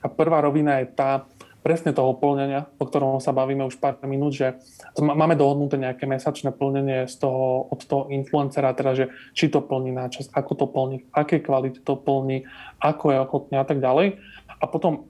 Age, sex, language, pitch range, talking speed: 20-39, male, Slovak, 130-145 Hz, 185 wpm